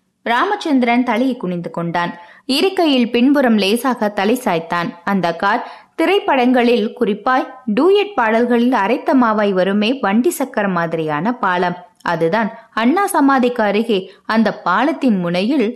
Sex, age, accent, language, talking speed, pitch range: female, 20-39, native, Tamil, 105 wpm, 195-275 Hz